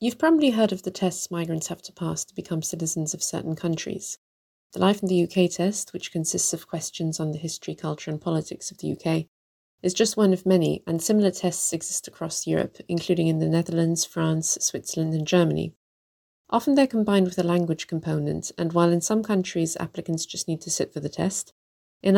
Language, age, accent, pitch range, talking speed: English, 20-39, British, 160-185 Hz, 205 wpm